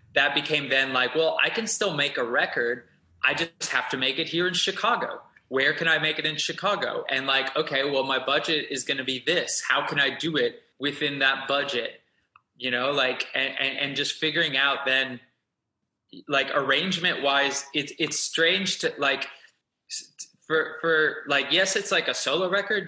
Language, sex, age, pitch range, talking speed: English, male, 20-39, 135-185 Hz, 185 wpm